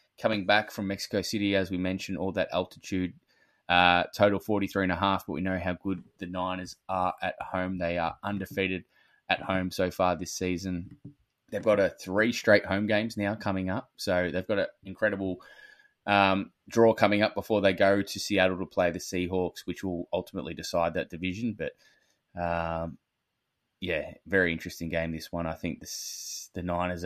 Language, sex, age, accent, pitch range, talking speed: English, male, 20-39, Australian, 85-100 Hz, 185 wpm